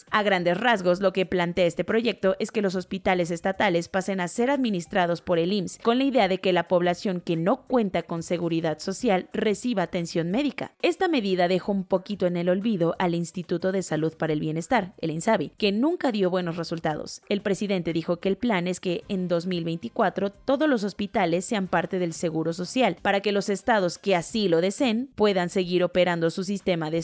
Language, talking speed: Spanish, 200 wpm